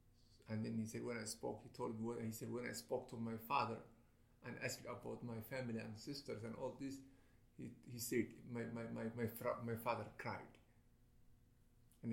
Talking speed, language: 200 wpm, English